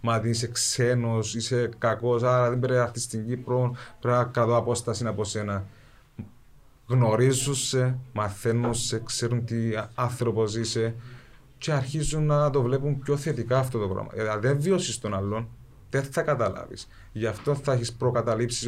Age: 20-39